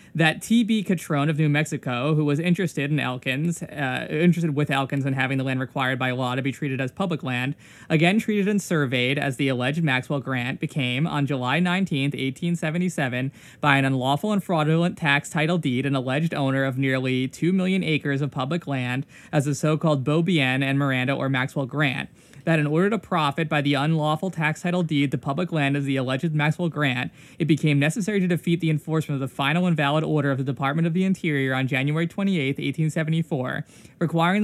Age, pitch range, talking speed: 20-39, 140-170 Hz, 195 wpm